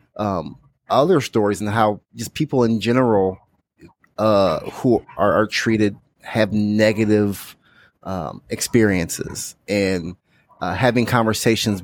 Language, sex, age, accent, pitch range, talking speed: English, male, 30-49, American, 100-115 Hz, 110 wpm